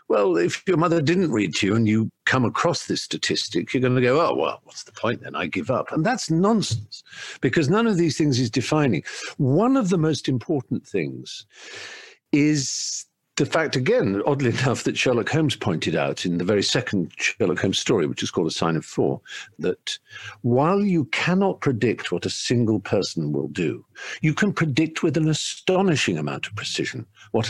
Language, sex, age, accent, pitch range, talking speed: English, male, 50-69, British, 110-165 Hz, 195 wpm